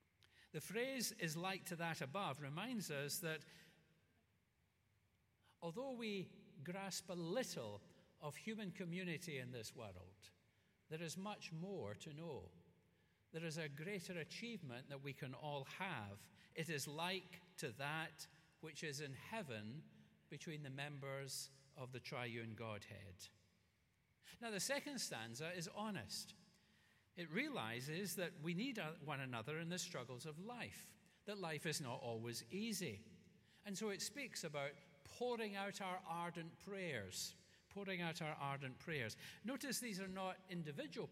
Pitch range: 135-195 Hz